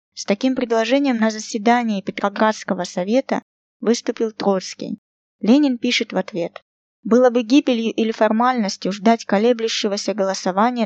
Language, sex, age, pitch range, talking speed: Russian, female, 20-39, 195-240 Hz, 115 wpm